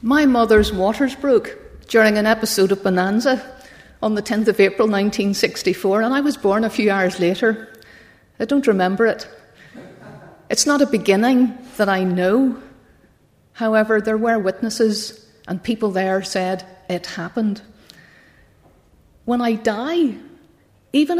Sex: female